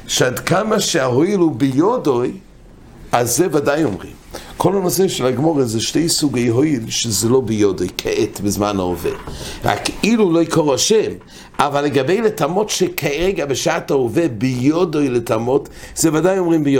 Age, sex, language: 60-79, male, English